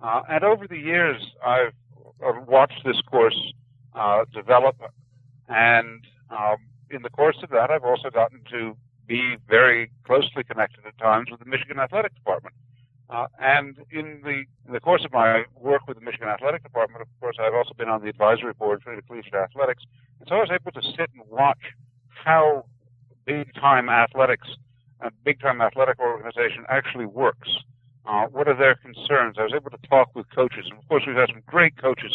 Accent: American